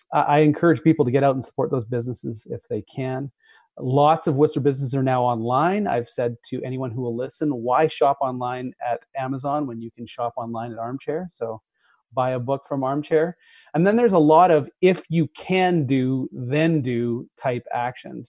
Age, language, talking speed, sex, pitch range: 30-49, English, 195 wpm, male, 125-150 Hz